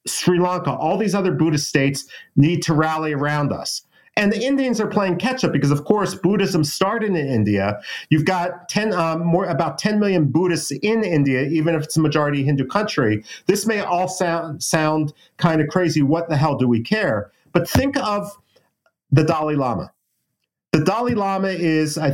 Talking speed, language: 185 wpm, English